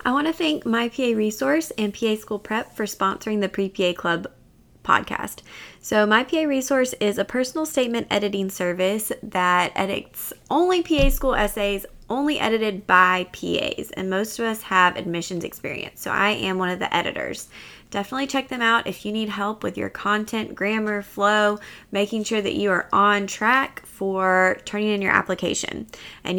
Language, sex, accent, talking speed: English, female, American, 175 wpm